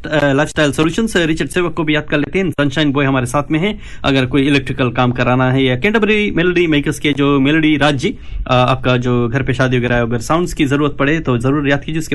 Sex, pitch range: male, 125-150 Hz